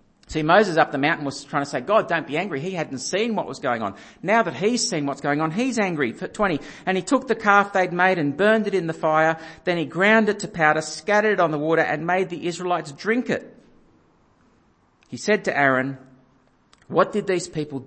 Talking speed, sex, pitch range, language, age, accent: 230 wpm, male, 145-215 Hz, English, 50-69, Australian